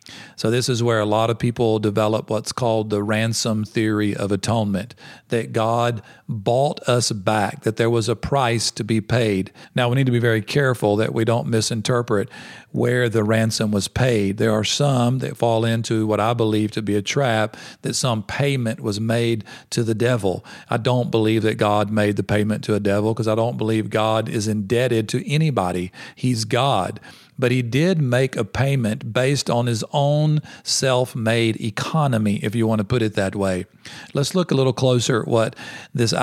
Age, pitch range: 40-59, 110-125 Hz